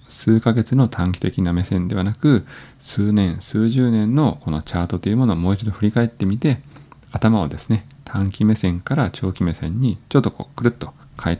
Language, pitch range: Japanese, 90-120 Hz